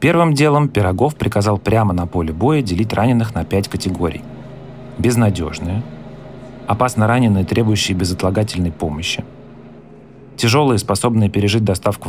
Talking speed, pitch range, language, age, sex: 115 wpm, 90-115 Hz, Russian, 30-49, male